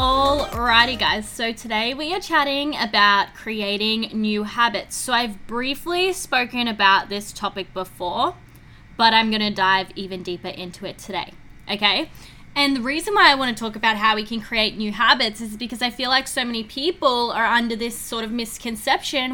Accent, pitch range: Australian, 200-245 Hz